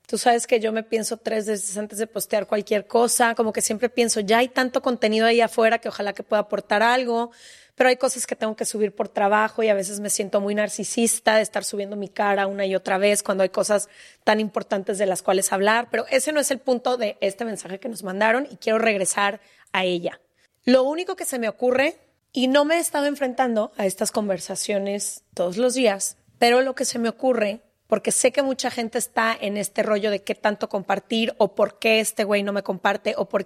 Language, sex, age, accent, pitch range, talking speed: Spanish, female, 30-49, Mexican, 205-245 Hz, 230 wpm